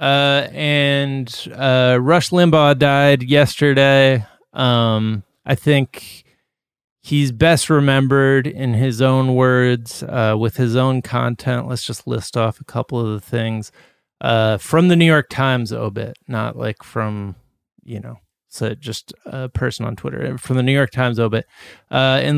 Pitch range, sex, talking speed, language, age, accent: 120-145 Hz, male, 155 wpm, English, 30-49, American